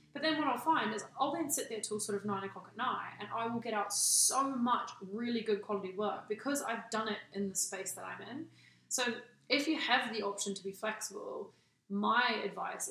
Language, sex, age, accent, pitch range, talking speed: English, female, 20-39, Australian, 200-245 Hz, 230 wpm